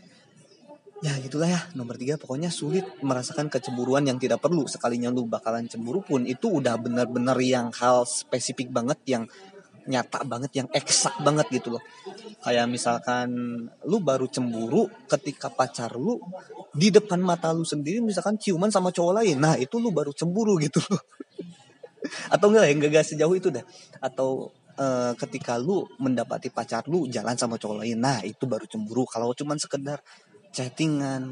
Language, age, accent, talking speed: Indonesian, 20-39, native, 155 wpm